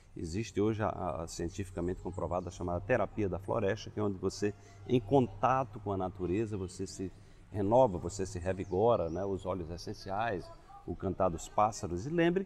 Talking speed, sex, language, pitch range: 180 wpm, male, Portuguese, 90-125 Hz